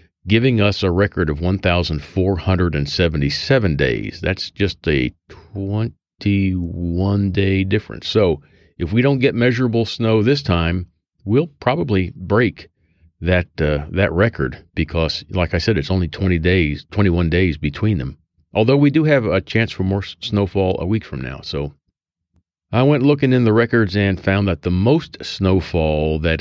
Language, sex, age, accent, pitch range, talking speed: English, male, 40-59, American, 85-105 Hz, 155 wpm